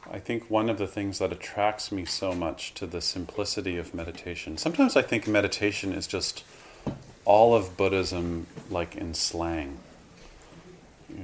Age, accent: 30-49, American